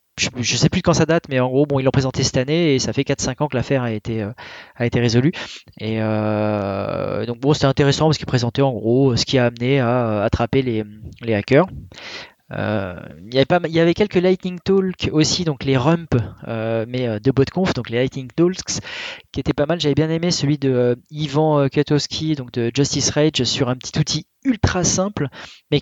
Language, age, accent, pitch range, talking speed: French, 20-39, French, 120-150 Hz, 215 wpm